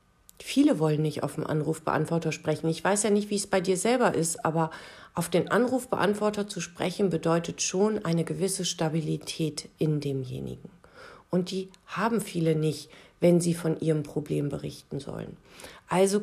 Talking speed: 160 wpm